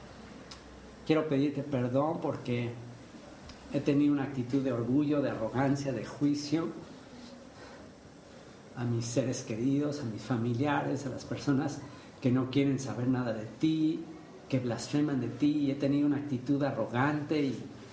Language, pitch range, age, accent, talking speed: English, 125-145 Hz, 50-69, Mexican, 135 wpm